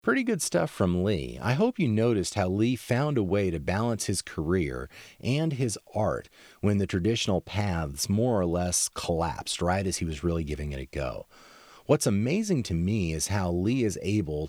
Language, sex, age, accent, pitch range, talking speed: English, male, 40-59, American, 90-125 Hz, 195 wpm